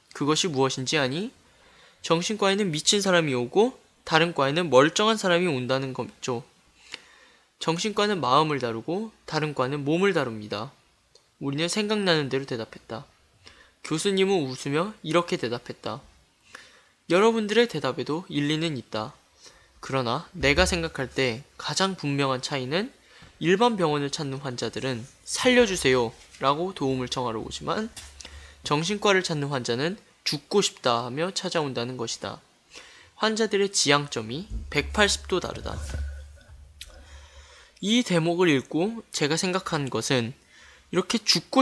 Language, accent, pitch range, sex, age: Korean, native, 130-185 Hz, male, 20-39